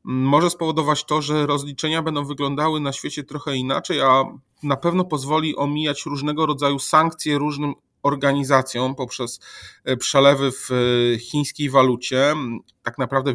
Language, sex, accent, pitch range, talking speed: Polish, male, native, 135-155 Hz, 125 wpm